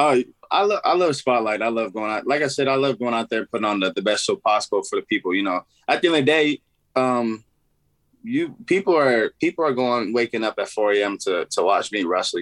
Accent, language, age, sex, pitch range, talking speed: American, English, 20-39, male, 100-125 Hz, 260 wpm